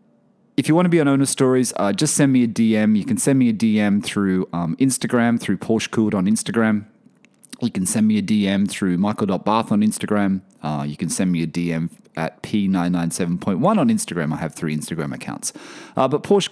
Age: 30-49